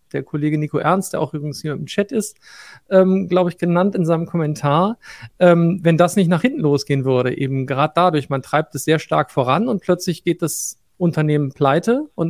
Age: 40-59